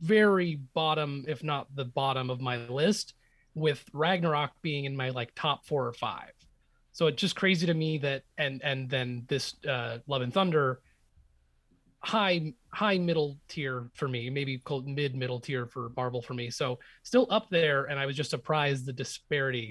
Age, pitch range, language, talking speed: 30-49, 125-160 Hz, English, 185 wpm